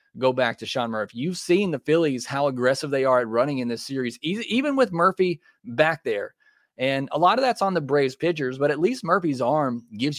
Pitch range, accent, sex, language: 120-155 Hz, American, male, English